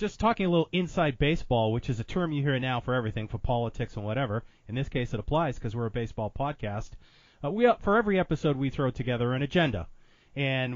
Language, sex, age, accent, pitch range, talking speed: English, male, 30-49, American, 115-160 Hz, 225 wpm